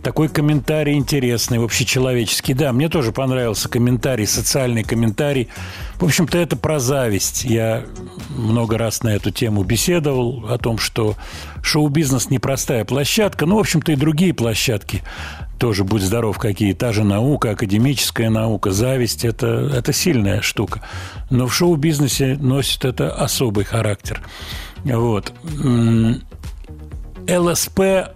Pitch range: 110-145 Hz